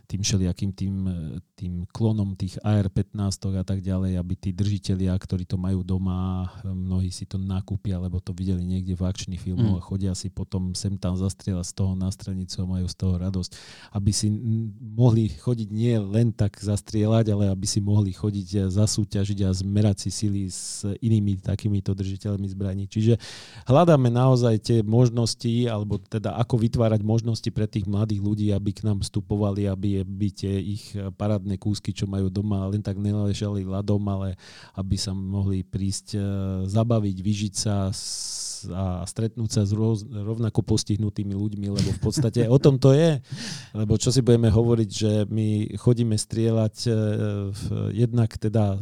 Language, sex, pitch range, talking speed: Slovak, male, 95-110 Hz, 165 wpm